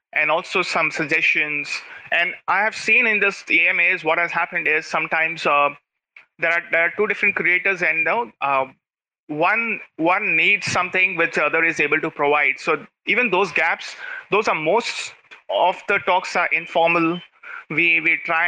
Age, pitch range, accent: 30-49, 150-185 Hz, Indian